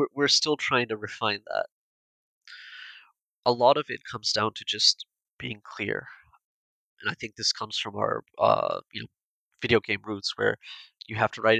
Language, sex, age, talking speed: English, male, 30-49, 175 wpm